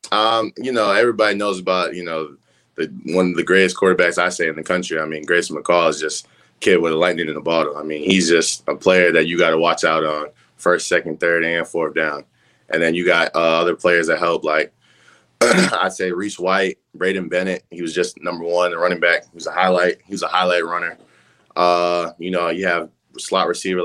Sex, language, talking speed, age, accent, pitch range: male, English, 230 wpm, 20-39, American, 80-90 Hz